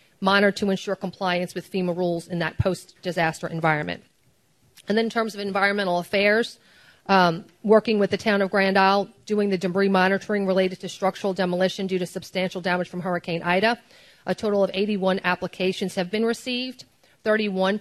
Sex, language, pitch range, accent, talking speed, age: female, English, 180-205 Hz, American, 170 wpm, 40-59